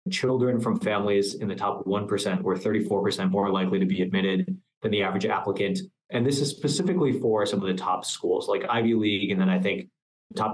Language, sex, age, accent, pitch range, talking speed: English, male, 20-39, American, 100-135 Hz, 205 wpm